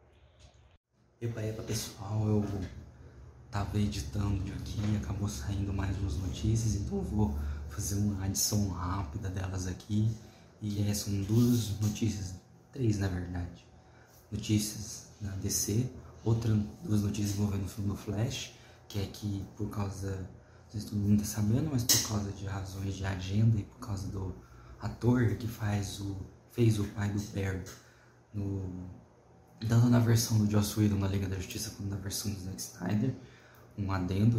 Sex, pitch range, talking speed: male, 100-115 Hz, 160 wpm